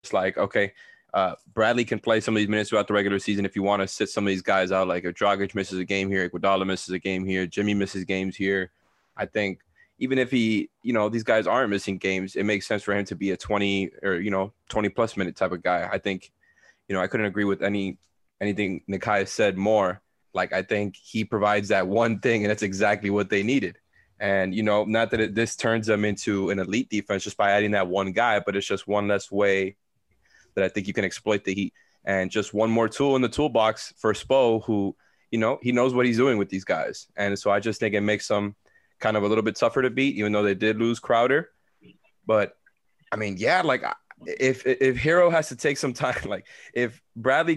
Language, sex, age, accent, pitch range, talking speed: English, male, 20-39, American, 100-115 Hz, 240 wpm